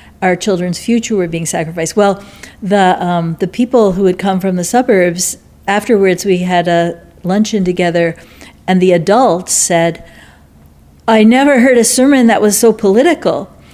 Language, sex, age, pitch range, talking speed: English, female, 50-69, 175-215 Hz, 155 wpm